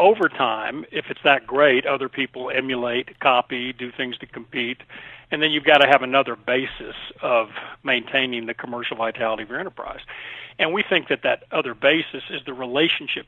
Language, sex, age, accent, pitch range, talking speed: English, male, 40-59, American, 125-155 Hz, 180 wpm